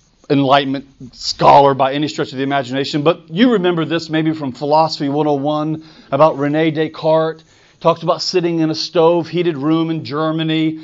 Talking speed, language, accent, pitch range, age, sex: 160 wpm, English, American, 155-210 Hz, 40-59, male